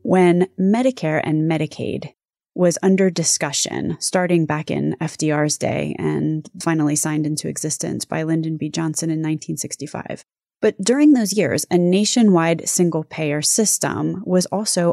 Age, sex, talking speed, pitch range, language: 20-39, female, 135 wpm, 160-195 Hz, English